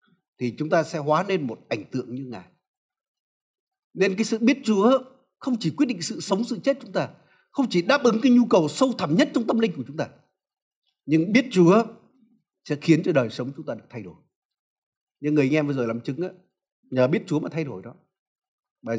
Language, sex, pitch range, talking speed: Vietnamese, male, 160-220 Hz, 230 wpm